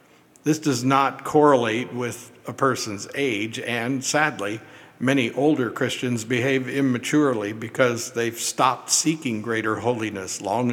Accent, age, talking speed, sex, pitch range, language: American, 60-79, 125 wpm, male, 120-140 Hz, English